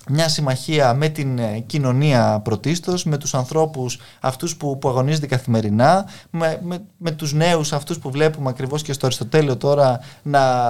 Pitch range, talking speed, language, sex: 125-180 Hz, 155 wpm, Greek, male